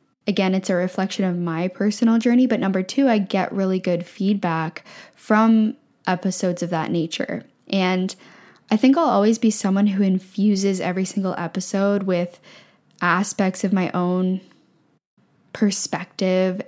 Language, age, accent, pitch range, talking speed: English, 10-29, American, 180-205 Hz, 140 wpm